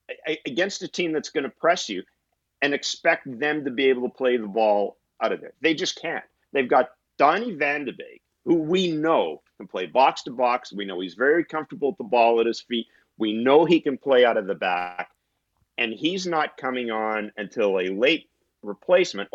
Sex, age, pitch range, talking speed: male, 50-69, 125-155 Hz, 210 wpm